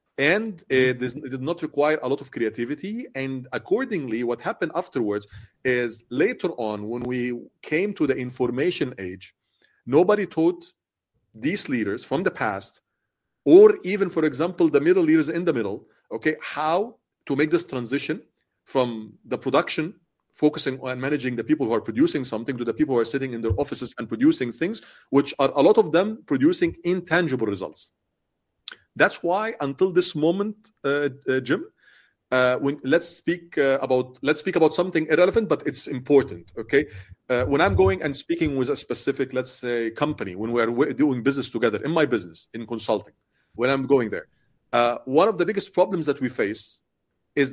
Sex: male